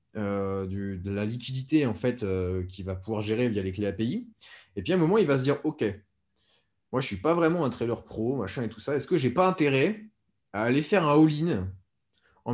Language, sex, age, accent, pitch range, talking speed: French, male, 20-39, French, 105-155 Hz, 245 wpm